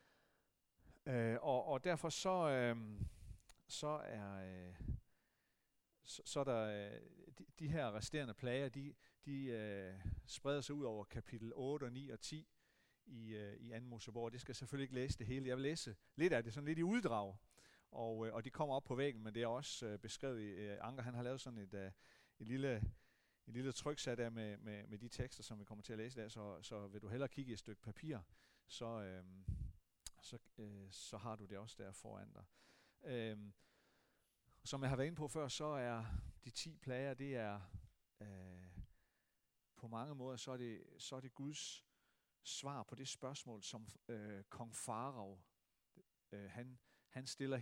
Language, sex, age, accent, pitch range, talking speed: Danish, male, 40-59, native, 105-135 Hz, 195 wpm